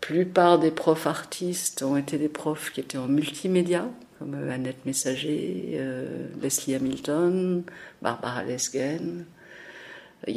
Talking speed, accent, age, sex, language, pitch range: 120 wpm, French, 50-69, female, French, 140-190 Hz